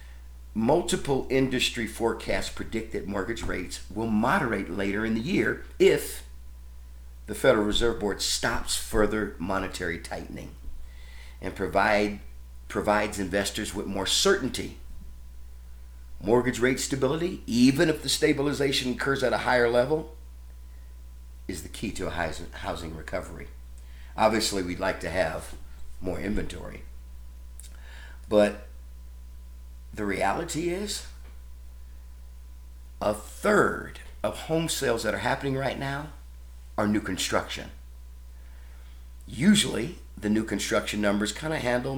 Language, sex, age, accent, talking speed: English, male, 50-69, American, 115 wpm